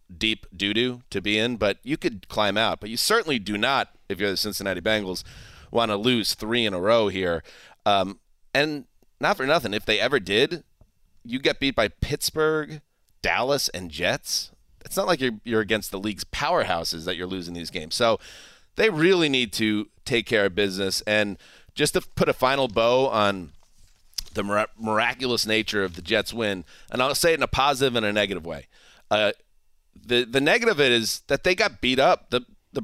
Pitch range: 100-130 Hz